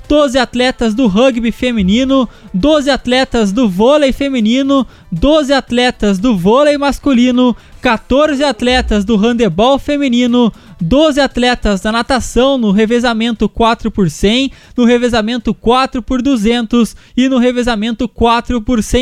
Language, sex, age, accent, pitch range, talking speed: Portuguese, male, 20-39, Brazilian, 225-260 Hz, 105 wpm